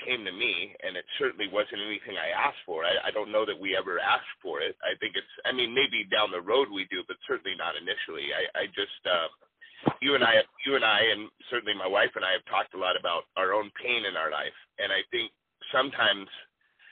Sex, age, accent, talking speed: male, 40-59, American, 230 wpm